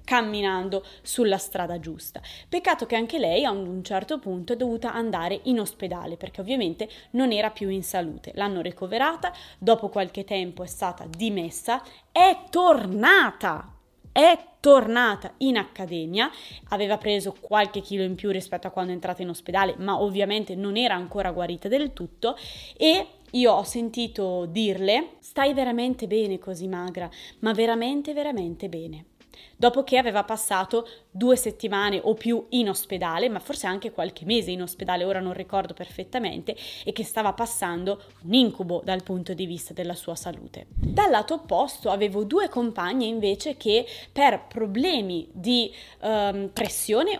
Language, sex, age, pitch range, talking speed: Italian, female, 20-39, 185-240 Hz, 155 wpm